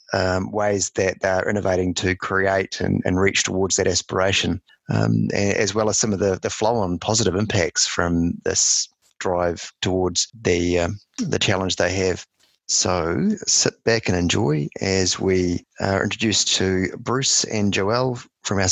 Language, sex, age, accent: English, male, 30-49, Australian